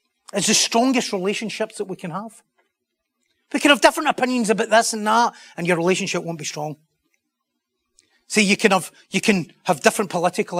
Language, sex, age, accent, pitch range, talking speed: English, male, 30-49, British, 155-195 Hz, 180 wpm